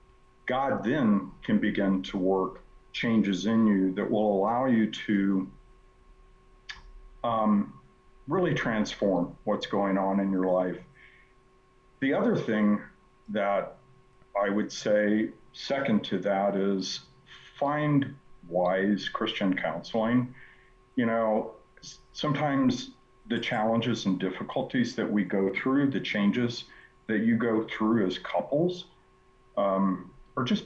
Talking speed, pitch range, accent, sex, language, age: 115 wpm, 95-115 Hz, American, male, English, 50-69